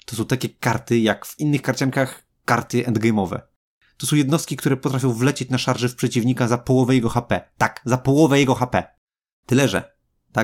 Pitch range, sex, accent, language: 110-130 Hz, male, native, Polish